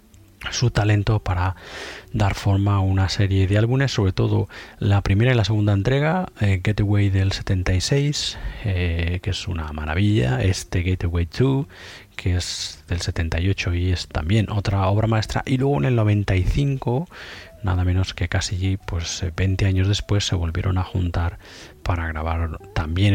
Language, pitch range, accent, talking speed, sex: Spanish, 90-110 Hz, Spanish, 155 wpm, male